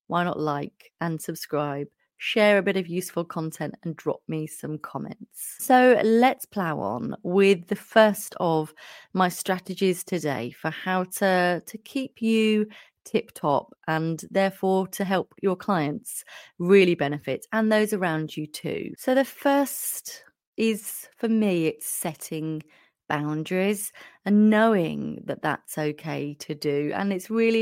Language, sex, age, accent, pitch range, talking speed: English, female, 30-49, British, 155-215 Hz, 145 wpm